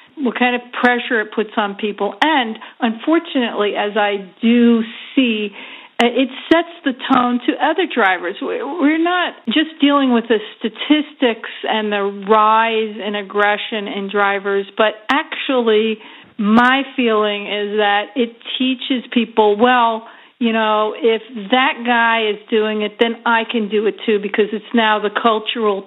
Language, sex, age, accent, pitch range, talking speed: English, female, 50-69, American, 215-245 Hz, 150 wpm